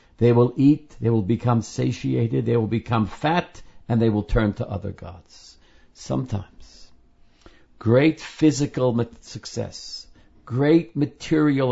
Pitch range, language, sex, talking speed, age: 90-130 Hz, English, male, 125 wpm, 60-79